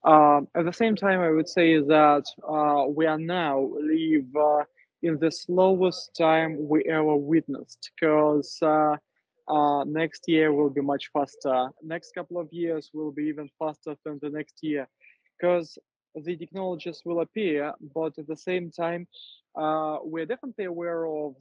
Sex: male